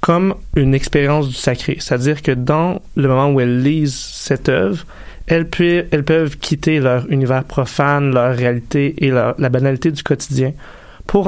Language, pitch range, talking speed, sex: French, 125-150 Hz, 160 wpm, male